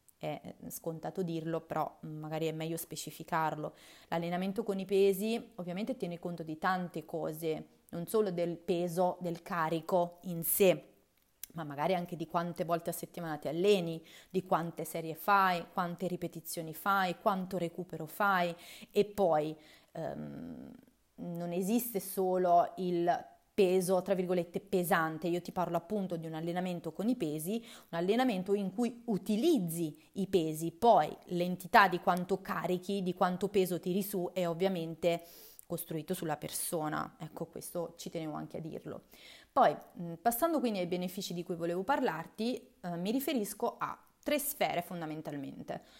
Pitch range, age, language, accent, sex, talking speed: 165-205 Hz, 30-49, Italian, native, female, 145 wpm